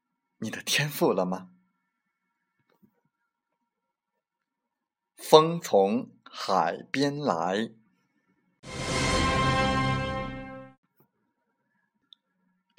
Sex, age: male, 50-69